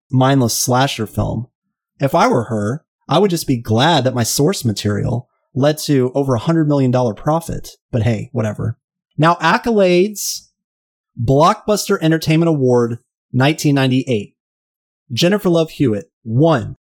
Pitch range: 125-160 Hz